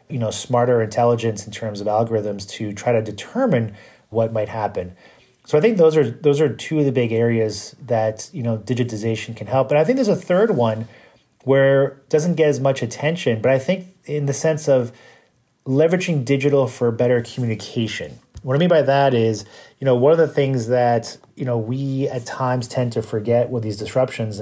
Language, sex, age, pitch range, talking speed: English, male, 30-49, 110-135 Hz, 205 wpm